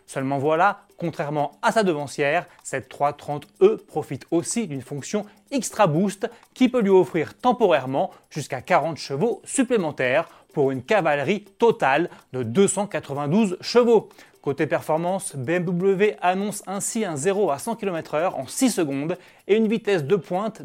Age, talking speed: 30-49, 140 wpm